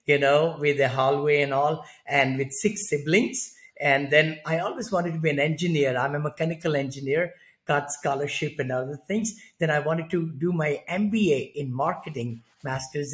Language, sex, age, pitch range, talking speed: English, male, 50-69, 145-195 Hz, 180 wpm